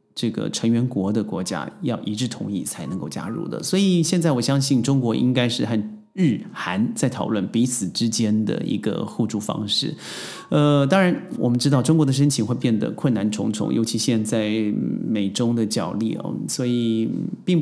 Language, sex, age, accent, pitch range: Chinese, male, 30-49, native, 110-150 Hz